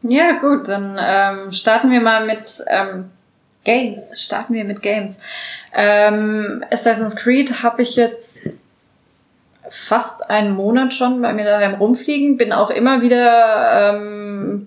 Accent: German